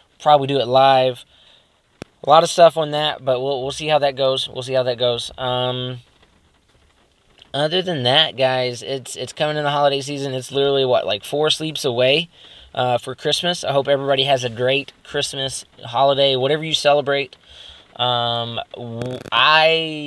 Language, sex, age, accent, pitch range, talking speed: English, male, 20-39, American, 135-185 Hz, 170 wpm